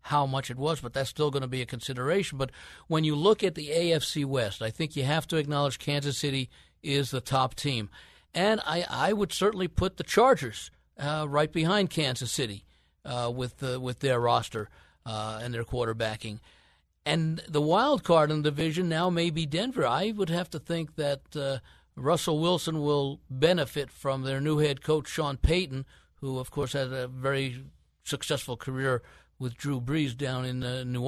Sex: male